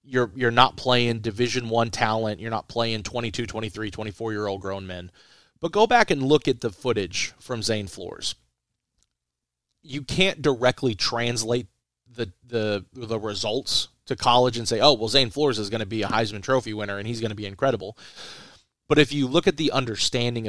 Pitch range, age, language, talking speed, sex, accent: 110-140 Hz, 30-49, English, 190 wpm, male, American